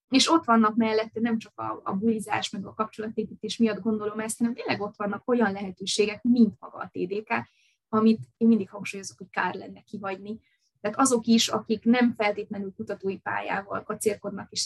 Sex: female